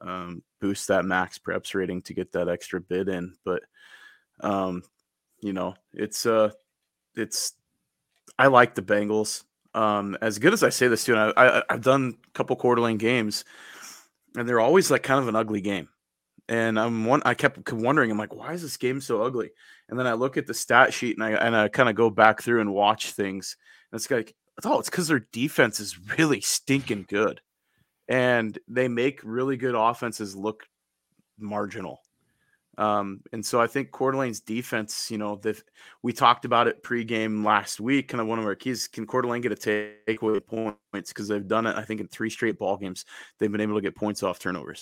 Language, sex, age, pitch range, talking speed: English, male, 20-39, 105-120 Hz, 205 wpm